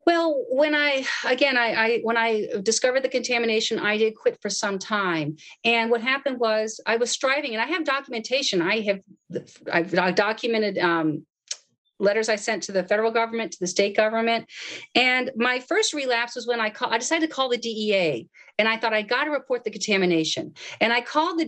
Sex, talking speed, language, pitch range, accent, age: female, 200 wpm, English, 200-255 Hz, American, 40-59